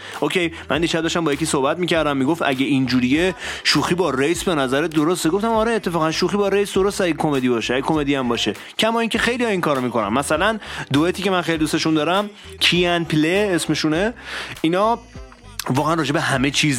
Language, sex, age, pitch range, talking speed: Persian, male, 30-49, 130-190 Hz, 195 wpm